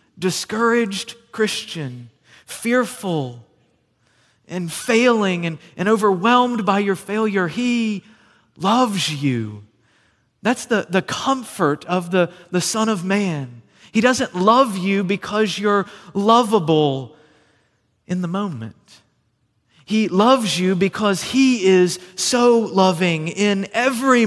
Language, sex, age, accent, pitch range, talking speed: English, male, 30-49, American, 125-195 Hz, 110 wpm